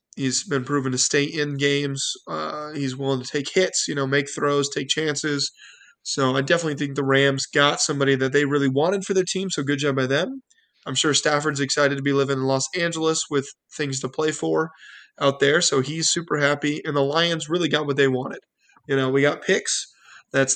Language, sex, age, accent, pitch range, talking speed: English, male, 20-39, American, 140-160 Hz, 215 wpm